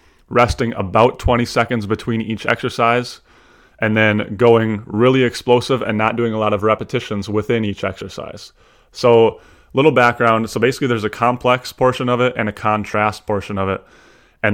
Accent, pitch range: American, 100-115 Hz